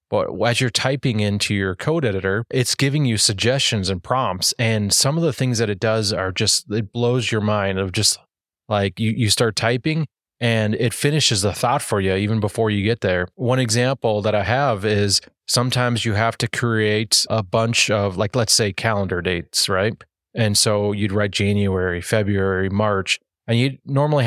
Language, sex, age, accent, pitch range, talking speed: English, male, 30-49, American, 100-120 Hz, 190 wpm